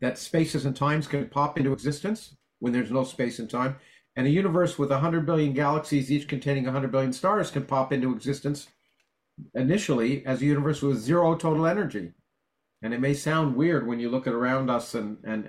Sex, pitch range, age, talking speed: male, 125-155 Hz, 50-69, 205 wpm